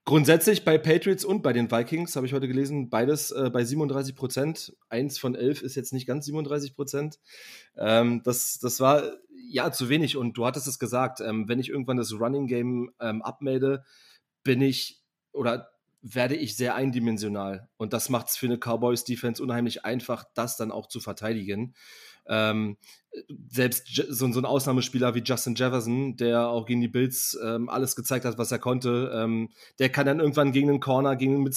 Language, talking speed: German, 175 wpm